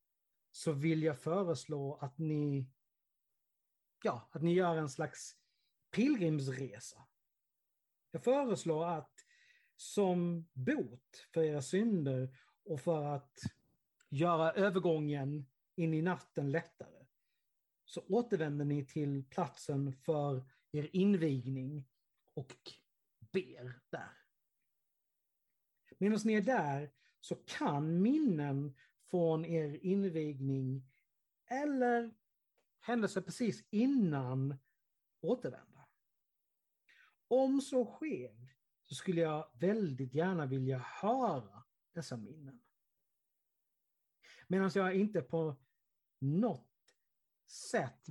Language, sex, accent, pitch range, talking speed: Swedish, male, native, 140-190 Hz, 90 wpm